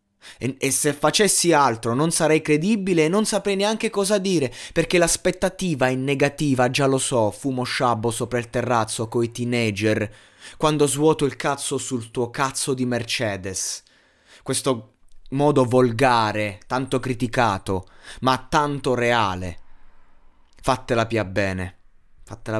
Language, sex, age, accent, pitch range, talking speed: Italian, male, 20-39, native, 110-135 Hz, 130 wpm